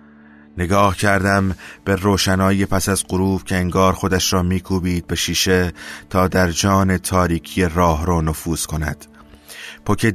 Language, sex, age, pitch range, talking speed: Persian, male, 30-49, 85-95 Hz, 135 wpm